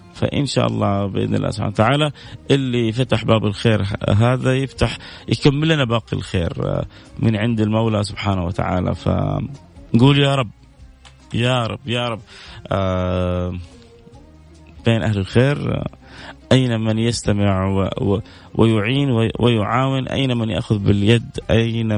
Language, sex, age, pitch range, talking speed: English, male, 30-49, 105-130 Hz, 115 wpm